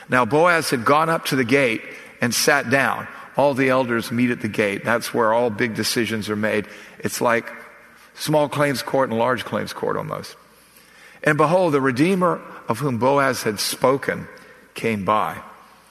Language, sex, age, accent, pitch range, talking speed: English, male, 50-69, American, 115-140 Hz, 175 wpm